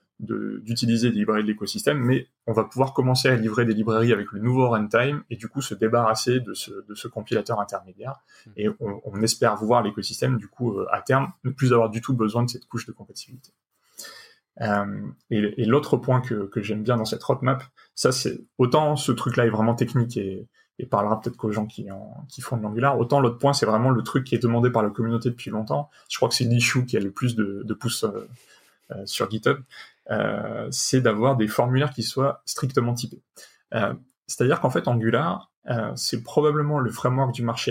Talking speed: 220 wpm